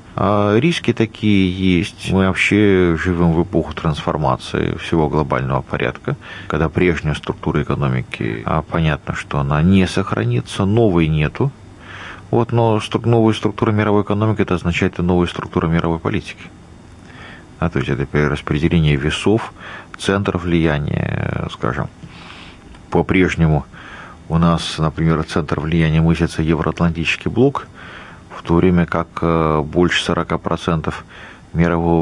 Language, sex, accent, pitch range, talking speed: Russian, male, native, 80-100 Hz, 120 wpm